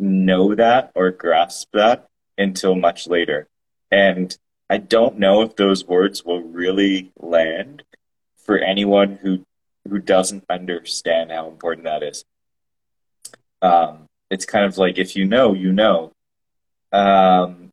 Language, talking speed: English, 130 wpm